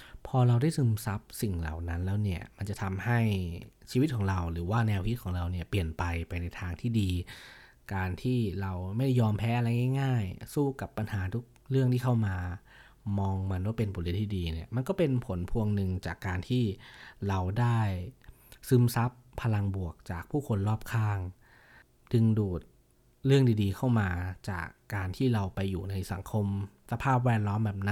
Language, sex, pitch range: Thai, male, 95-120 Hz